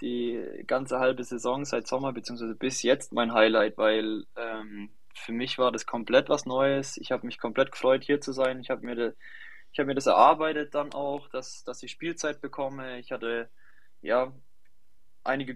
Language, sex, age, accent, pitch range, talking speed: German, male, 20-39, German, 115-135 Hz, 175 wpm